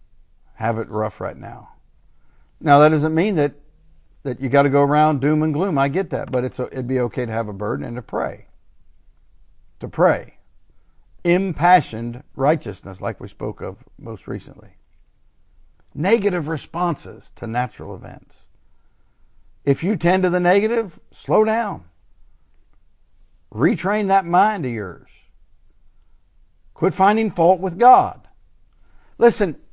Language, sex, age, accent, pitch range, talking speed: English, male, 50-69, American, 115-180 Hz, 140 wpm